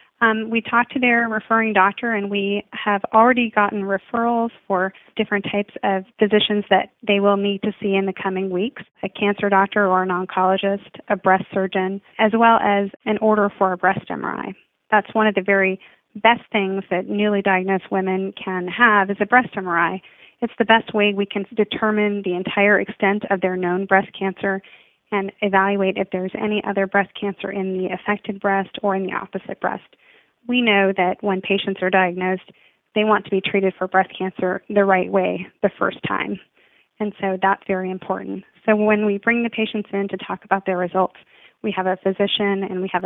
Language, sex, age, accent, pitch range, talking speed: English, female, 30-49, American, 190-210 Hz, 195 wpm